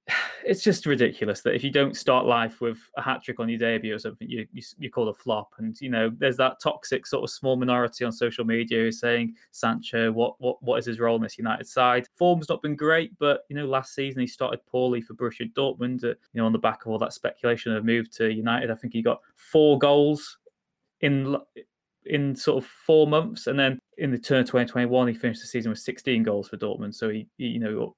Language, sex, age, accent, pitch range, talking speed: English, male, 20-39, British, 115-145 Hz, 235 wpm